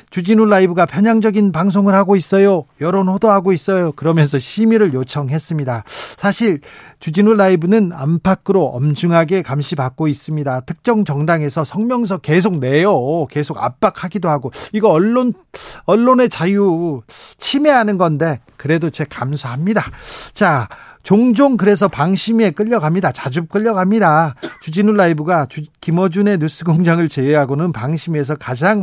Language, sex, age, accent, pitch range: Korean, male, 40-59, native, 150-195 Hz